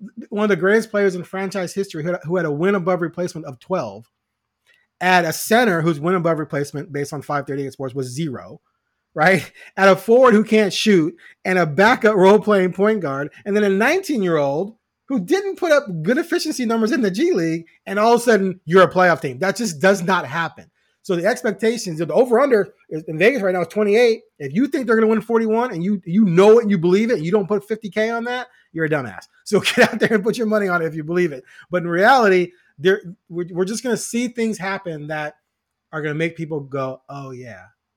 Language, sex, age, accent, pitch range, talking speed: English, male, 30-49, American, 155-215 Hz, 225 wpm